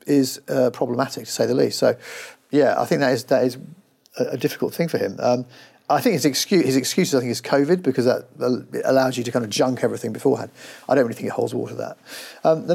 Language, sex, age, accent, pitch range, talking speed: English, male, 40-59, British, 125-145 Hz, 255 wpm